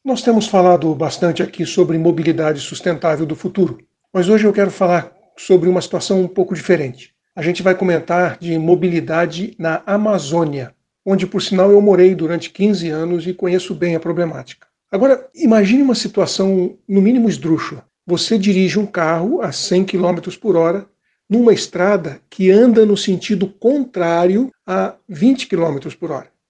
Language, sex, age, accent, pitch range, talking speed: Portuguese, male, 60-79, Brazilian, 170-200 Hz, 160 wpm